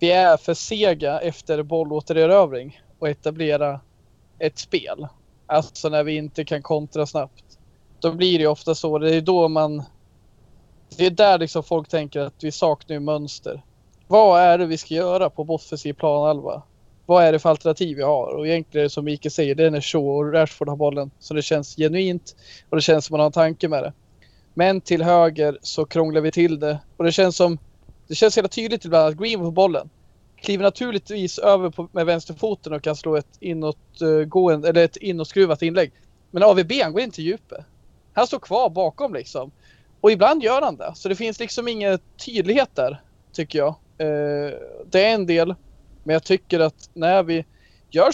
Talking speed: 195 wpm